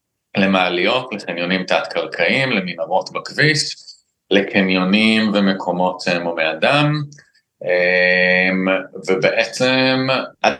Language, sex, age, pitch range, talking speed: Hebrew, male, 30-49, 85-110 Hz, 70 wpm